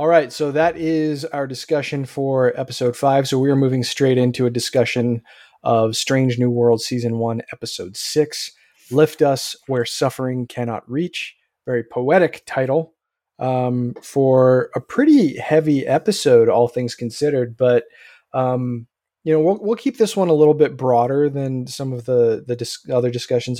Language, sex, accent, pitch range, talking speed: English, male, American, 120-150 Hz, 165 wpm